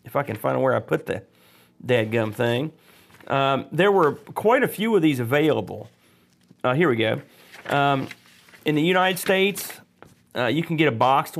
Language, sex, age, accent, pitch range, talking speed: English, male, 40-59, American, 125-165 Hz, 180 wpm